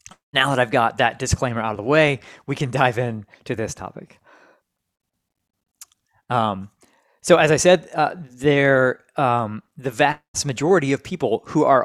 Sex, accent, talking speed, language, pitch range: male, American, 160 wpm, English, 105-135 Hz